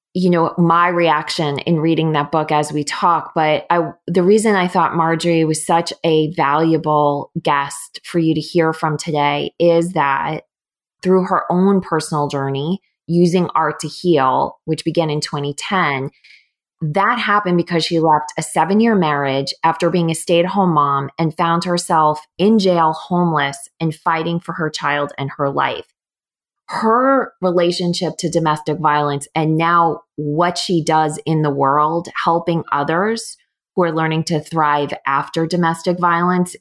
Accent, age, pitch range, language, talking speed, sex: American, 20-39, 150-175 Hz, English, 160 wpm, female